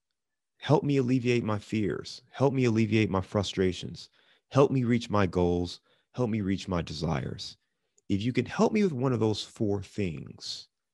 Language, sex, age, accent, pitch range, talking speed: English, male, 30-49, American, 90-125 Hz, 170 wpm